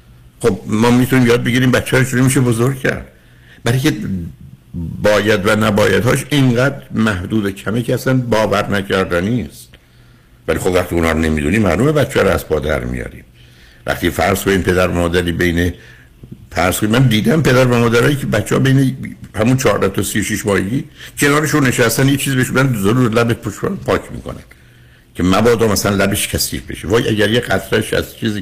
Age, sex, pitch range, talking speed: 60-79, male, 90-125 Hz, 170 wpm